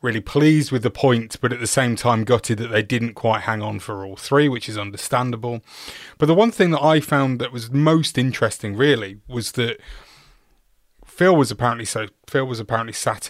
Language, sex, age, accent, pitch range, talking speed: English, male, 30-49, British, 110-130 Hz, 205 wpm